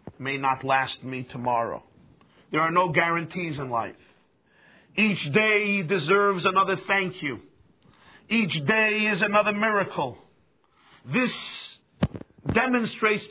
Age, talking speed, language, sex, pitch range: 50-69, 110 wpm, English, male, 130-200 Hz